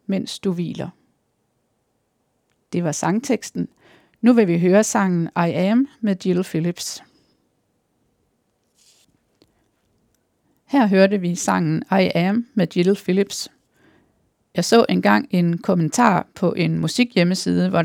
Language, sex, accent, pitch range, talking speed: Danish, female, native, 175-215 Hz, 120 wpm